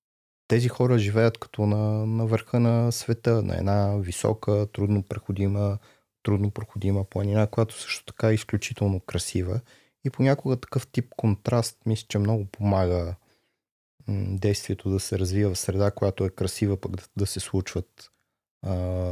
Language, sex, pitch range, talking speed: Bulgarian, male, 95-110 Hz, 145 wpm